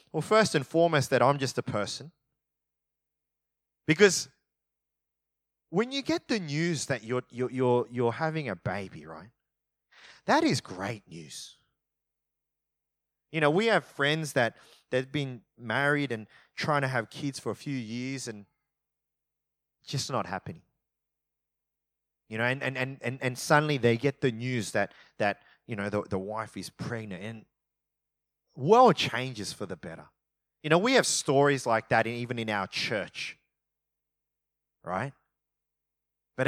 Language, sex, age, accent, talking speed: English, male, 30-49, Australian, 145 wpm